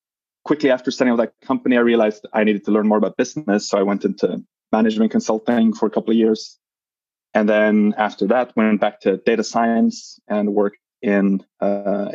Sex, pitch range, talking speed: male, 105-130 Hz, 195 wpm